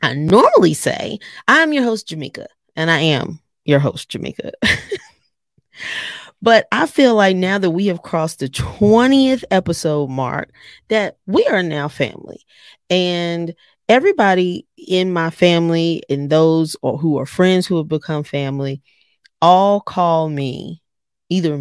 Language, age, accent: English, 30-49, American